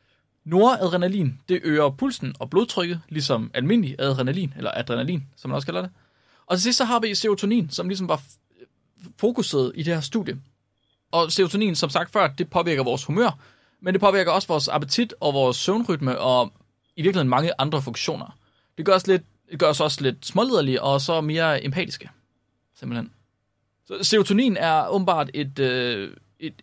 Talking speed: 165 wpm